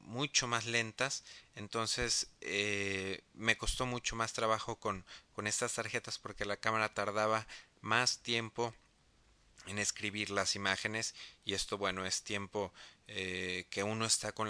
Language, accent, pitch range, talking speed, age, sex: Spanish, Mexican, 100-115 Hz, 140 wpm, 30-49, male